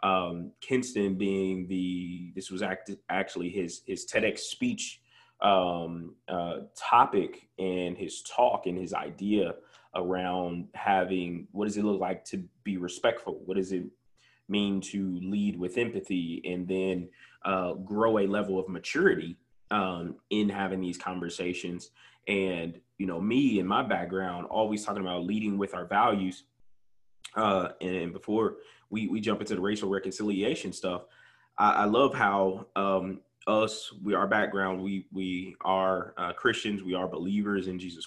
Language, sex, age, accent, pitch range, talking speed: English, male, 20-39, American, 90-100 Hz, 155 wpm